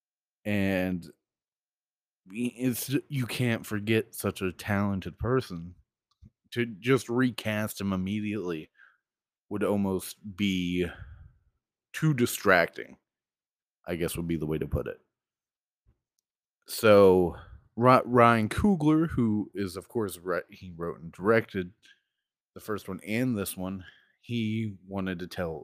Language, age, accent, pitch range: English, 30-49, American, 90-120 Hz